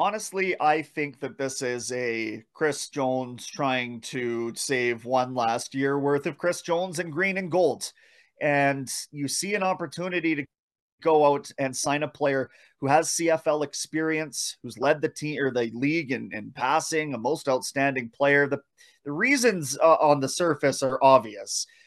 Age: 30-49